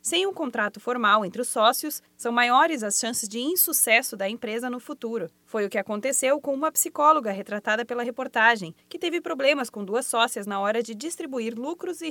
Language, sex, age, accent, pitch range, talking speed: Portuguese, female, 20-39, Brazilian, 220-285 Hz, 195 wpm